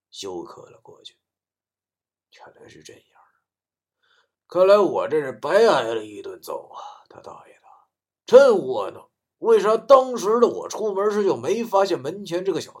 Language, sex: Chinese, male